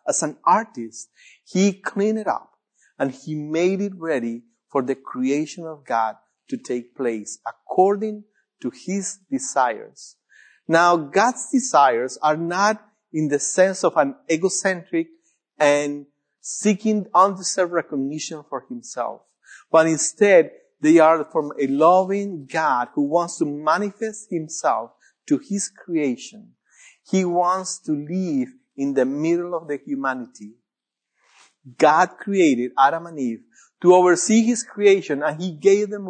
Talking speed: 135 wpm